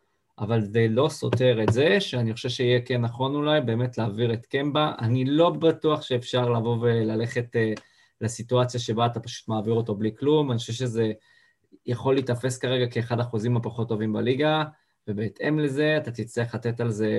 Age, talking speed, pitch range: 20-39, 170 wpm, 115-130 Hz